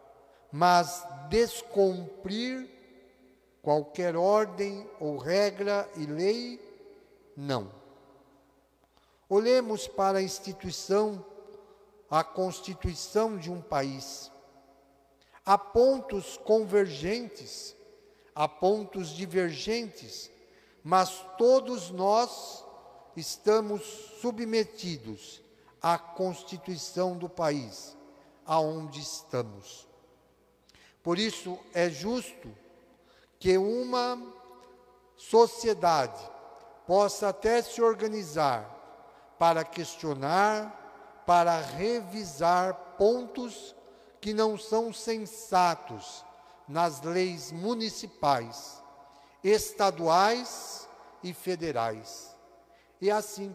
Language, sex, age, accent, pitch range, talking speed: Portuguese, male, 50-69, Brazilian, 155-215 Hz, 70 wpm